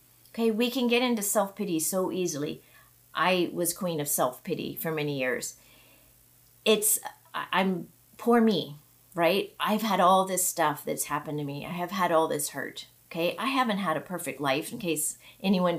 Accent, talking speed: American, 175 wpm